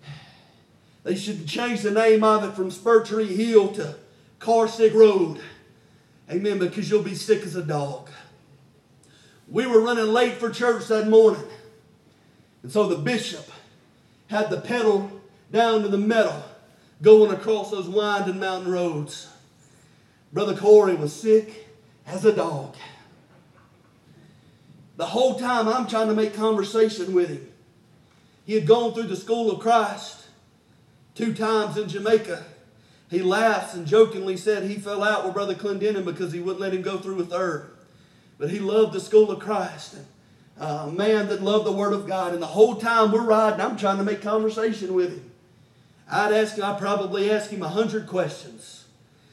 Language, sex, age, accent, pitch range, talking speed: English, male, 40-59, American, 160-220 Hz, 160 wpm